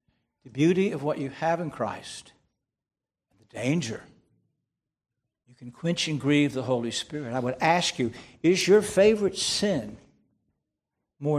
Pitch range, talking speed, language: 120-165 Hz, 140 wpm, English